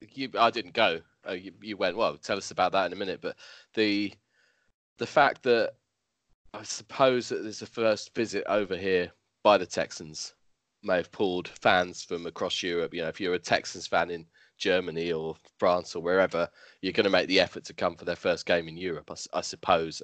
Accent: British